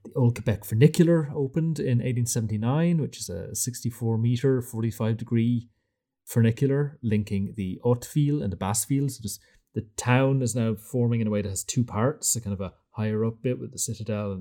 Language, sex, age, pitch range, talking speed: English, male, 30-49, 105-135 Hz, 185 wpm